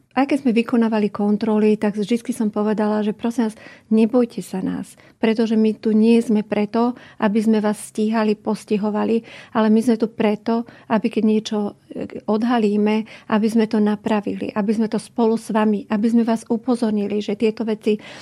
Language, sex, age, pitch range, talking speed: Slovak, female, 40-59, 210-225 Hz, 170 wpm